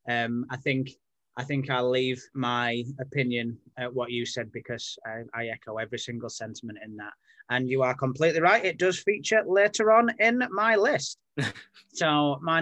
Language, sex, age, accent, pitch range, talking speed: English, male, 20-39, British, 125-155 Hz, 175 wpm